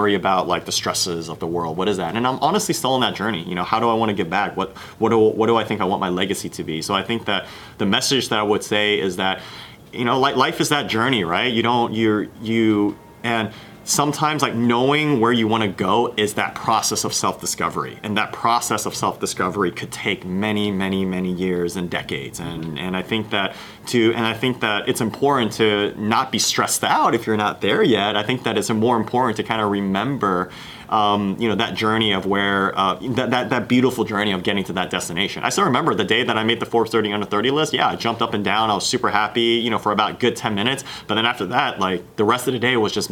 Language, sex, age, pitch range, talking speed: English, male, 30-49, 100-115 Hz, 255 wpm